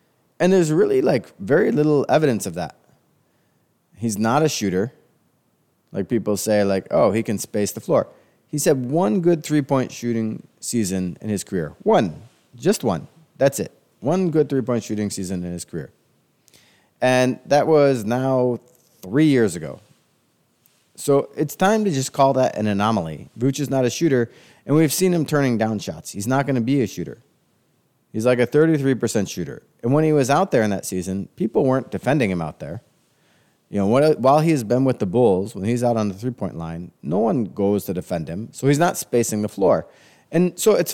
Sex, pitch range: male, 100-145 Hz